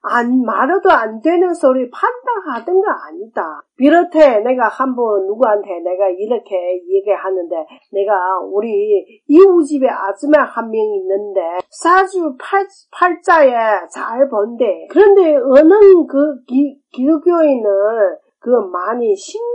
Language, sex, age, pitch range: Chinese, female, 40-59, 225-360 Hz